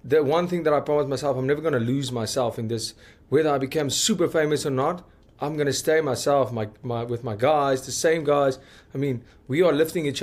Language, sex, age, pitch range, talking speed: English, male, 30-49, 125-155 Hz, 240 wpm